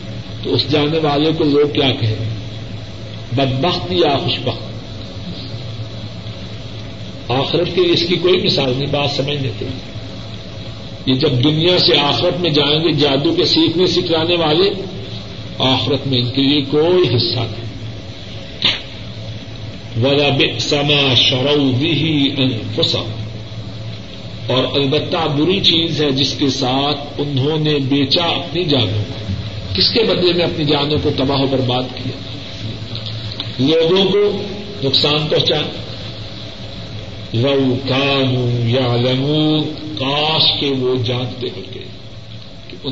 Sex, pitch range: male, 110-150 Hz